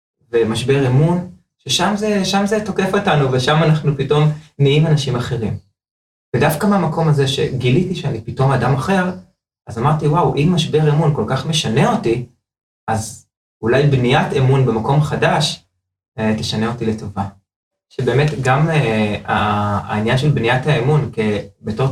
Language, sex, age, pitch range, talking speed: Hebrew, male, 20-39, 115-150 Hz, 130 wpm